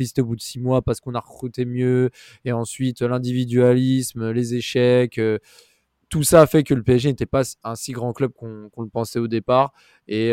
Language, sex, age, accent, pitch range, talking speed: French, male, 20-39, French, 115-135 Hz, 210 wpm